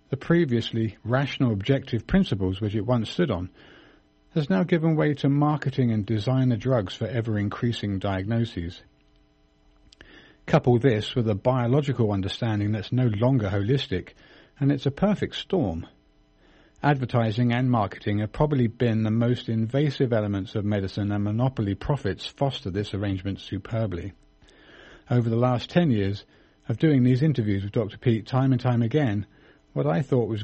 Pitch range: 105-140 Hz